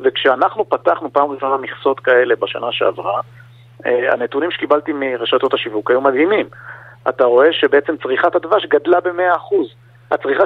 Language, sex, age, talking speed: Hebrew, male, 50-69, 125 wpm